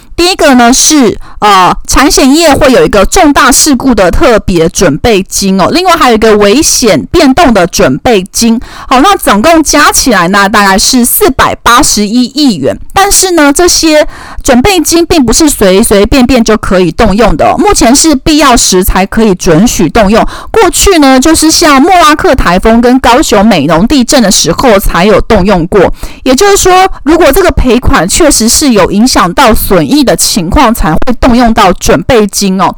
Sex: female